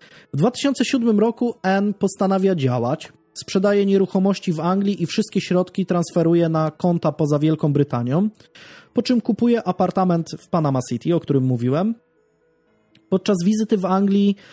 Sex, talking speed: male, 135 wpm